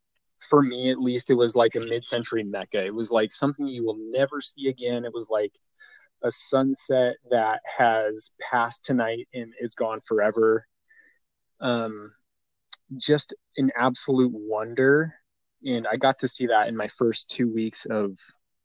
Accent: American